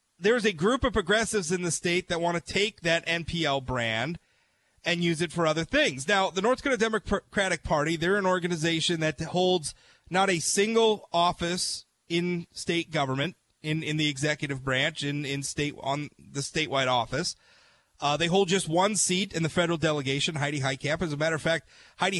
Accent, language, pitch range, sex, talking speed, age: American, English, 150-185 Hz, male, 185 wpm, 30-49